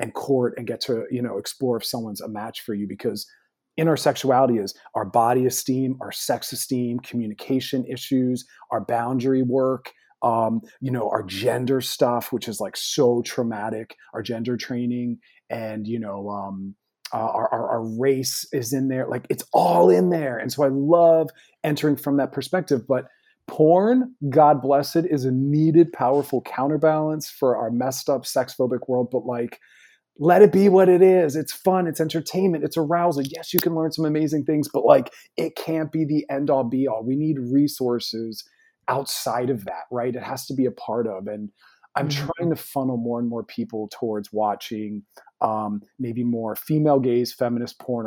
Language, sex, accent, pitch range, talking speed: English, male, American, 120-150 Hz, 185 wpm